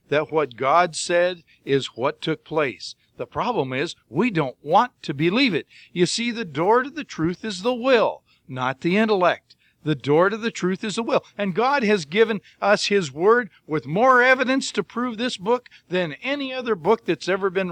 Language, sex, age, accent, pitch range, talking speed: English, male, 50-69, American, 155-215 Hz, 200 wpm